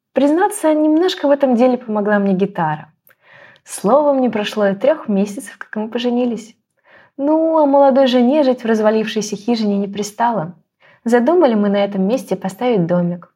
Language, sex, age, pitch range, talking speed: Ukrainian, female, 20-39, 190-255 Hz, 155 wpm